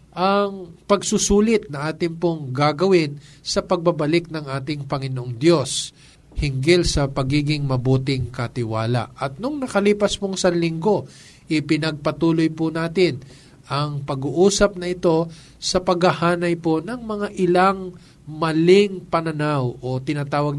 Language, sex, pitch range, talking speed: Filipino, male, 145-175 Hz, 115 wpm